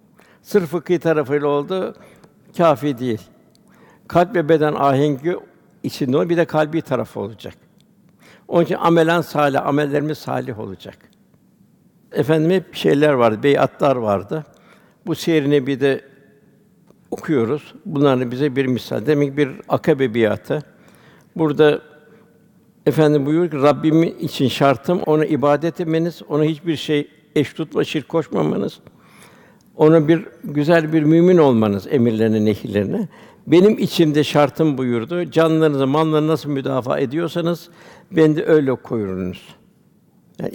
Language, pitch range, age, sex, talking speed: Turkish, 135-175 Hz, 60-79, male, 120 wpm